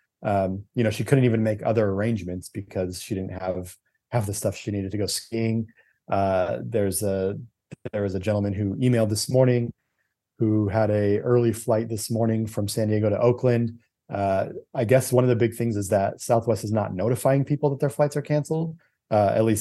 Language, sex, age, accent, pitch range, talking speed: English, male, 30-49, American, 100-115 Hz, 205 wpm